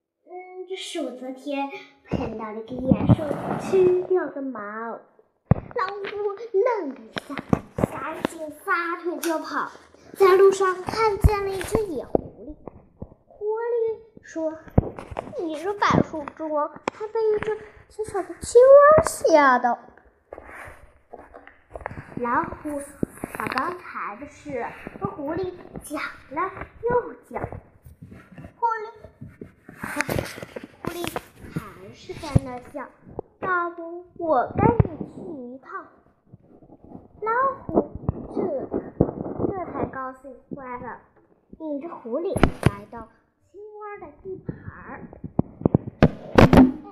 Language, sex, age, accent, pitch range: Chinese, male, 10-29, native, 270-390 Hz